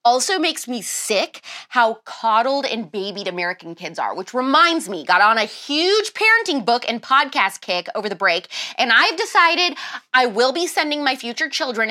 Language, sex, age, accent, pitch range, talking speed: English, female, 20-39, American, 205-310 Hz, 180 wpm